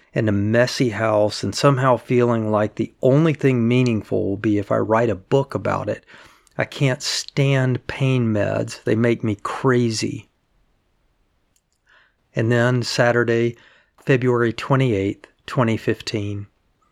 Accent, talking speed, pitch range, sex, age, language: American, 130 wpm, 105-125 Hz, male, 50-69, English